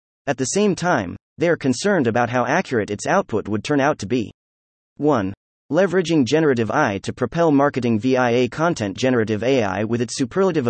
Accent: American